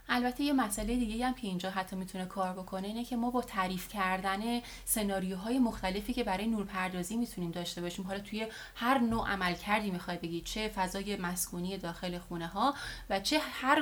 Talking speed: 180 wpm